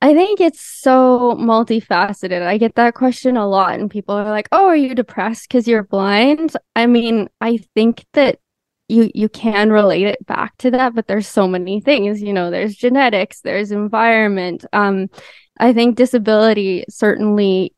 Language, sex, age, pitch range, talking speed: English, female, 10-29, 205-235 Hz, 170 wpm